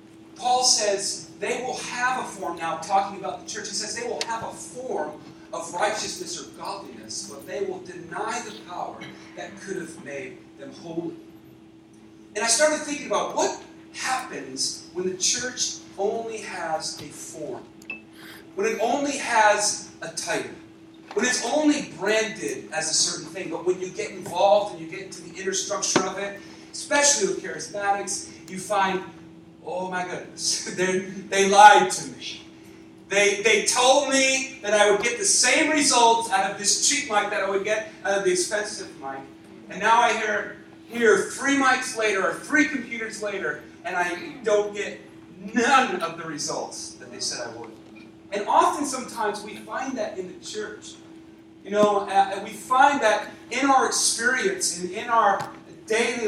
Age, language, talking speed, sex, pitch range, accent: 40-59, English, 175 wpm, male, 190-260 Hz, American